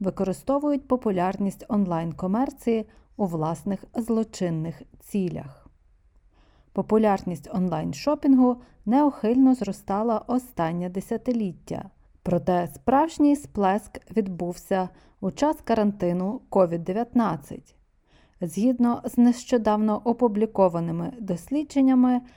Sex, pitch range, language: female, 185-255 Hz, Ukrainian